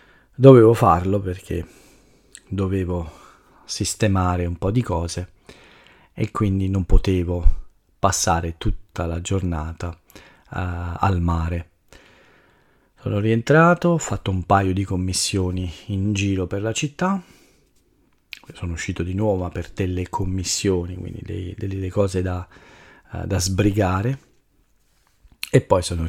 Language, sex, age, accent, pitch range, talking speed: Italian, male, 40-59, native, 90-105 Hz, 110 wpm